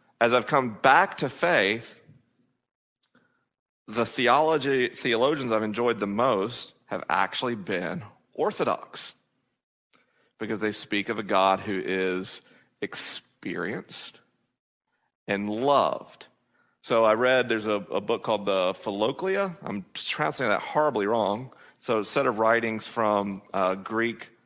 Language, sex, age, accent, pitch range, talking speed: English, male, 40-59, American, 100-115 Hz, 130 wpm